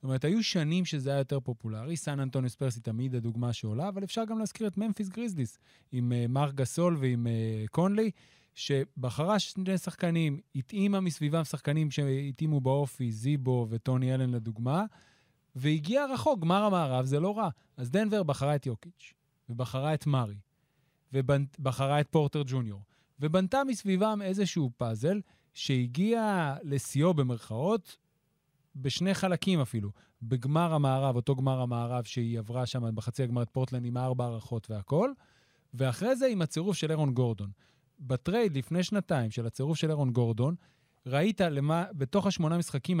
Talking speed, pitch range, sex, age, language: 145 wpm, 125-170 Hz, male, 30-49, Hebrew